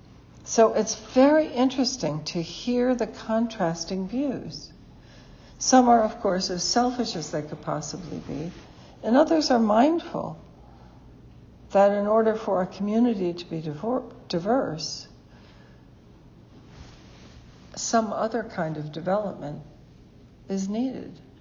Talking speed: 110 wpm